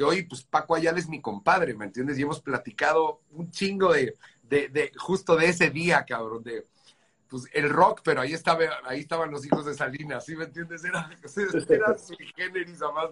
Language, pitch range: Spanish, 140-170 Hz